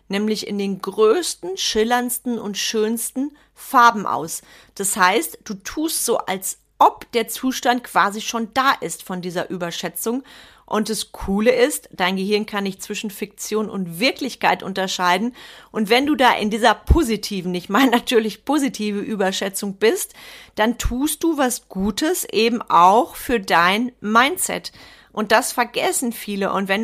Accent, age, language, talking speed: German, 40-59, German, 150 wpm